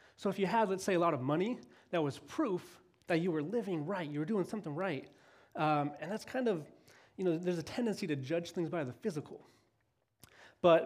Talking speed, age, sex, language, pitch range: 220 wpm, 30-49, male, English, 150-200 Hz